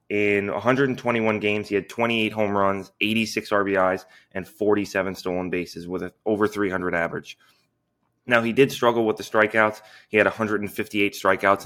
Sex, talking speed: male, 150 wpm